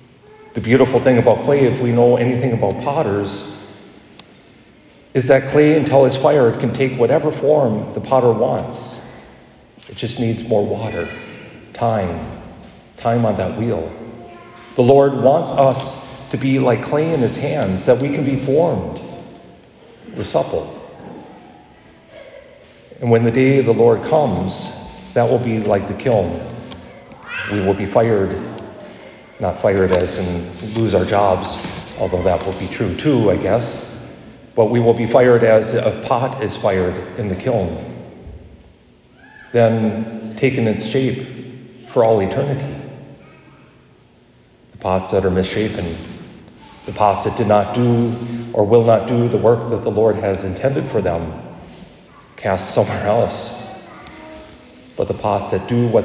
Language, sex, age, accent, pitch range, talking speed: English, male, 40-59, American, 100-125 Hz, 150 wpm